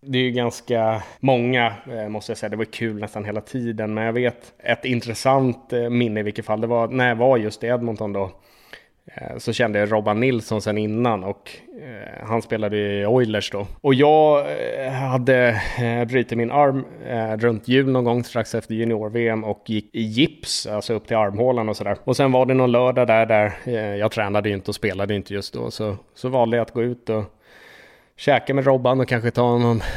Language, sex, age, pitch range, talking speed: English, male, 20-39, 105-125 Hz, 195 wpm